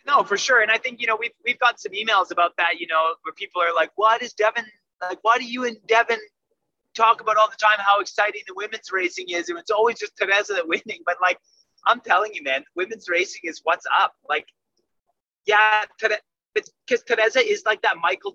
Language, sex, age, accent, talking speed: English, male, 30-49, American, 220 wpm